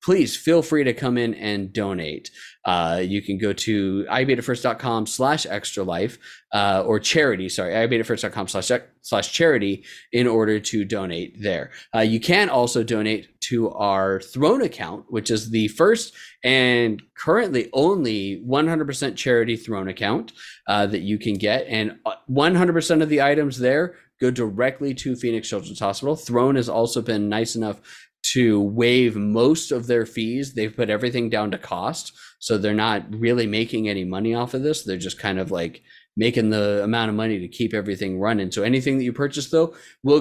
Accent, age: American, 20-39